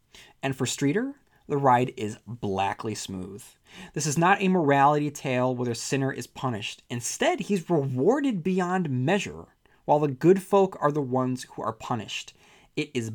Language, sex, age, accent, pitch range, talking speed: English, male, 30-49, American, 120-165 Hz, 165 wpm